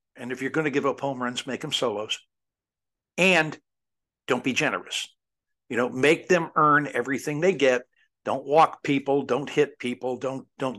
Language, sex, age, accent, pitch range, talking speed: English, male, 60-79, American, 130-170 Hz, 180 wpm